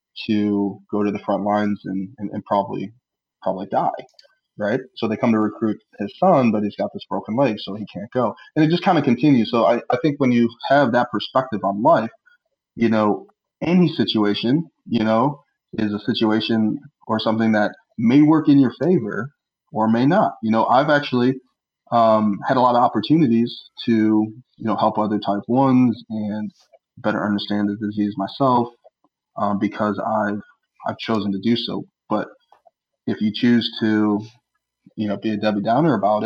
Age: 20-39